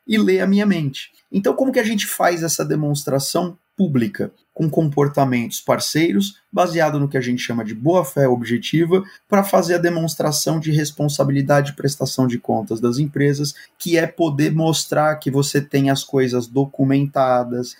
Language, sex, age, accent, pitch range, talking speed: Portuguese, male, 30-49, Brazilian, 125-180 Hz, 160 wpm